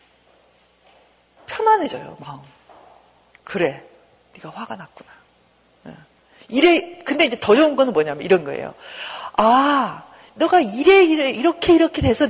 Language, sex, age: Korean, female, 40-59